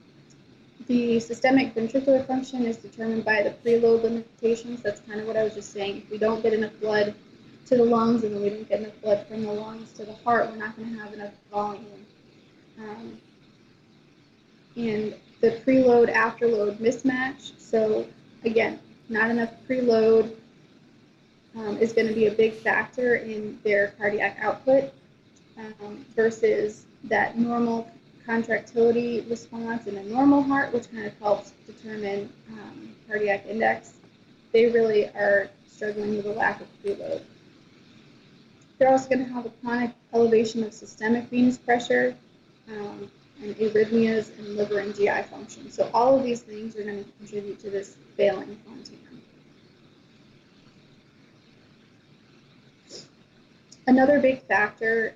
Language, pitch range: English, 210-235 Hz